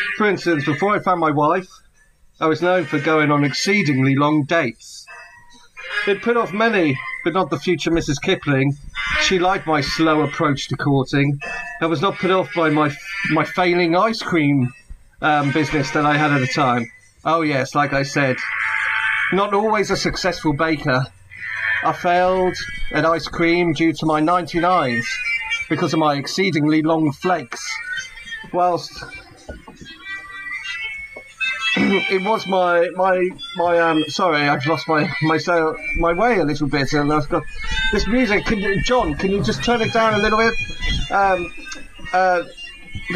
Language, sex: English, male